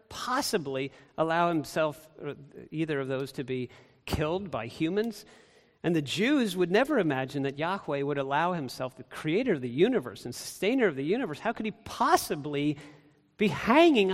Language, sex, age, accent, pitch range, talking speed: English, male, 40-59, American, 135-175 Hz, 160 wpm